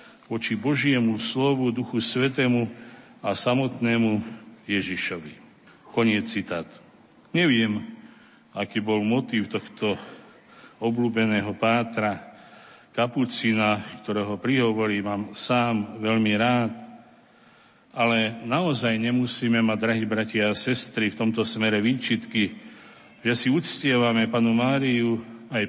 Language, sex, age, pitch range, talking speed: Slovak, male, 50-69, 110-130 Hz, 100 wpm